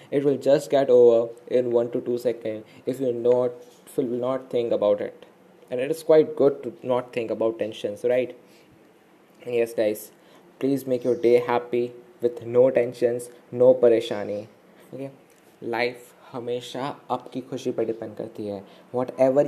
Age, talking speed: 20-39, 165 wpm